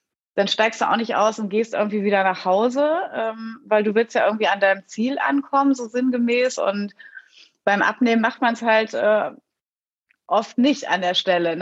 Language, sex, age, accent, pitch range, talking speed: German, female, 30-49, German, 195-235 Hz, 180 wpm